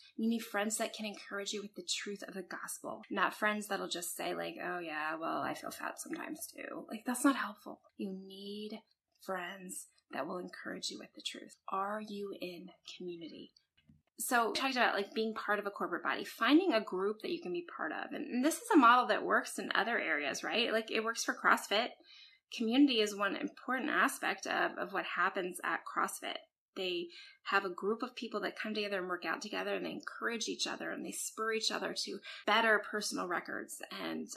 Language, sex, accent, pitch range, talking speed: English, female, American, 200-265 Hz, 210 wpm